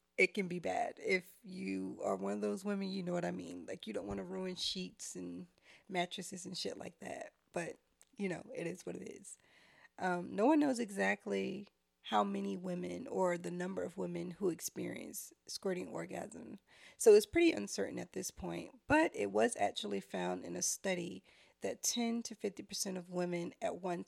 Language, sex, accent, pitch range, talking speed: English, female, American, 165-215 Hz, 190 wpm